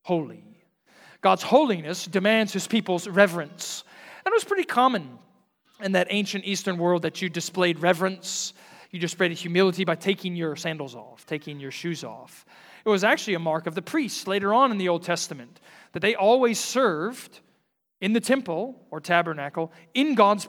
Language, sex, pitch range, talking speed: English, male, 150-190 Hz, 170 wpm